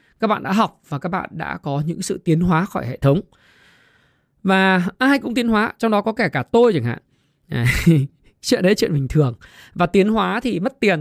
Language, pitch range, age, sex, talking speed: Vietnamese, 155-220 Hz, 20-39, male, 225 wpm